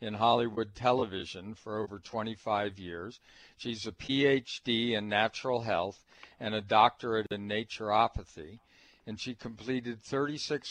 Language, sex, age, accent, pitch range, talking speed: English, male, 60-79, American, 110-135 Hz, 125 wpm